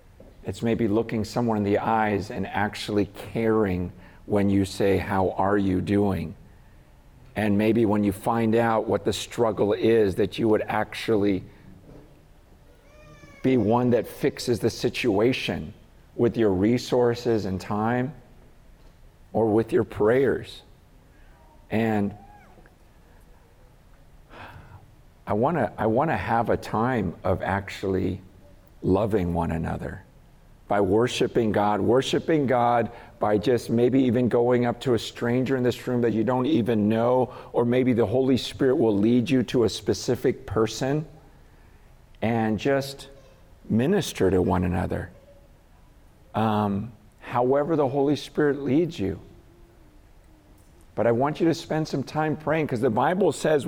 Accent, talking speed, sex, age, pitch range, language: American, 135 wpm, male, 50-69, 100-125 Hz, English